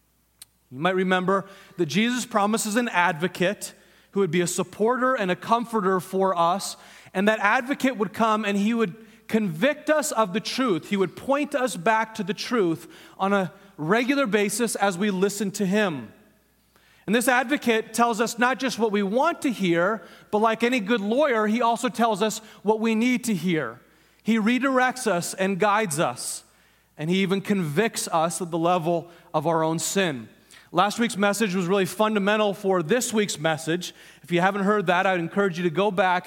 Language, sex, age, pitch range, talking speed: English, male, 30-49, 180-225 Hz, 185 wpm